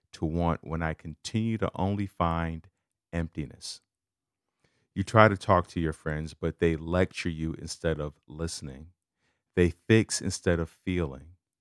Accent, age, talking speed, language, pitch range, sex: American, 40-59, 145 wpm, English, 90-120 Hz, male